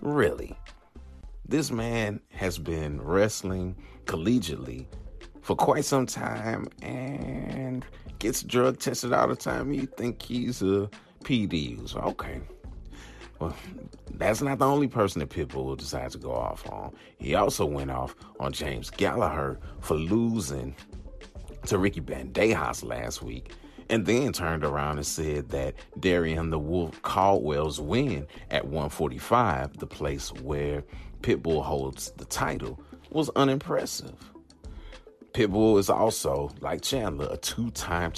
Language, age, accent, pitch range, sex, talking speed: English, 30-49, American, 75-115 Hz, male, 130 wpm